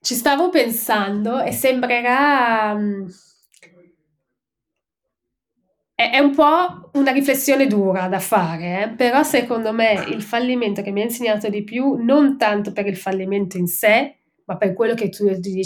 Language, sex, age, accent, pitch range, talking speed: Italian, female, 20-39, native, 190-240 Hz, 155 wpm